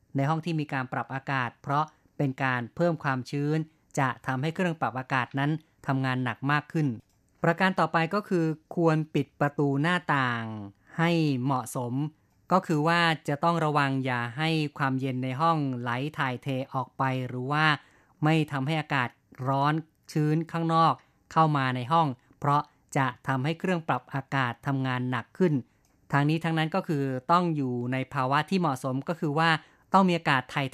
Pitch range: 130-160 Hz